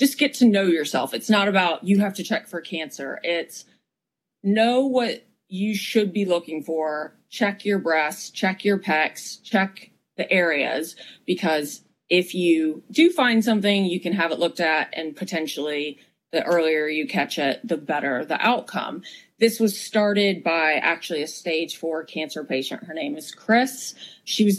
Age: 30-49